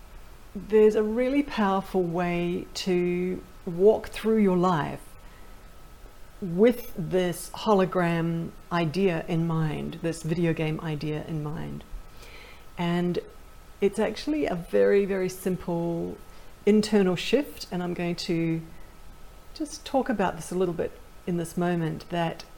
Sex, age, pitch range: female, 50-69, 160-215 Hz